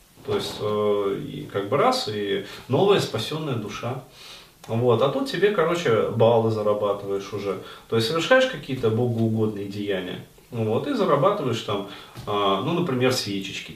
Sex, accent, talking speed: male, native, 135 wpm